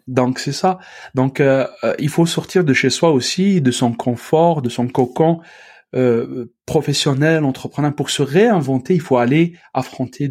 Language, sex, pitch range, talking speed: French, male, 130-170 Hz, 165 wpm